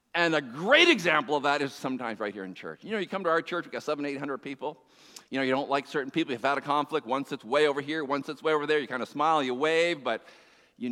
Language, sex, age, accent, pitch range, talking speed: English, male, 50-69, American, 135-185 Hz, 290 wpm